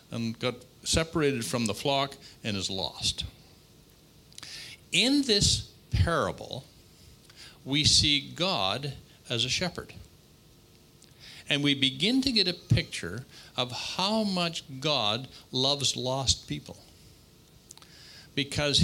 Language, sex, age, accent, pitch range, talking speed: English, male, 60-79, American, 115-155 Hz, 105 wpm